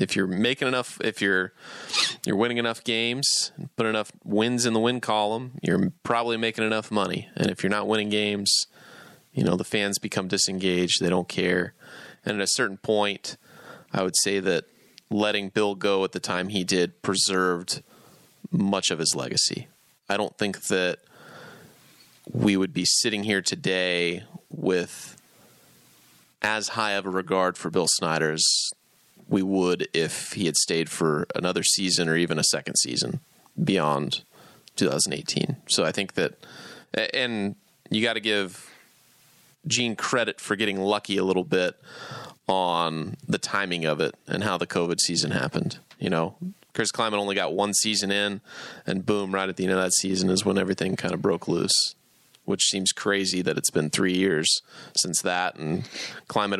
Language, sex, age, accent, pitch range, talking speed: English, male, 20-39, American, 95-110 Hz, 170 wpm